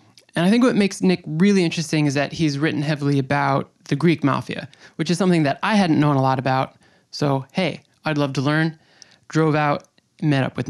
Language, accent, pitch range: English, American, 140-170 Hz